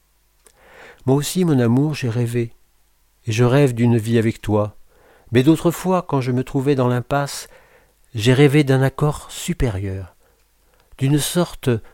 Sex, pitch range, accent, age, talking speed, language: male, 115-140 Hz, French, 60-79, 145 wpm, French